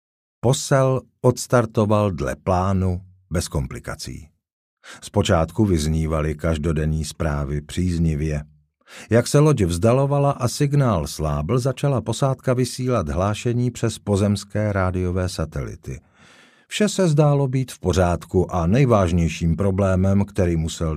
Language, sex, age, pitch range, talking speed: Czech, male, 50-69, 80-115 Hz, 105 wpm